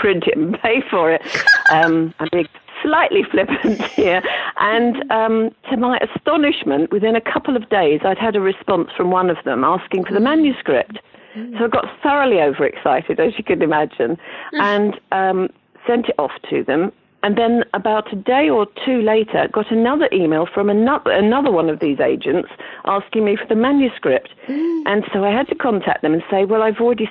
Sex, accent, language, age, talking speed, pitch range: female, British, English, 50-69, 190 wpm, 175-255 Hz